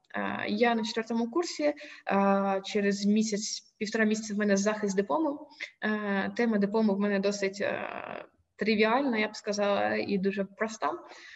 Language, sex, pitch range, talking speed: Ukrainian, female, 200-260 Hz, 125 wpm